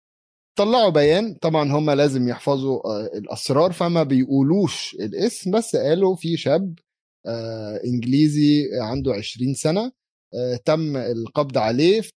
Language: Arabic